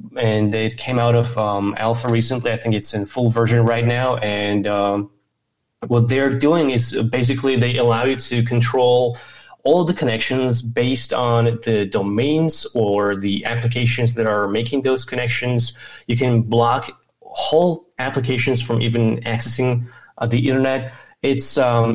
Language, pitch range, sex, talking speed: English, 115-130 Hz, male, 155 wpm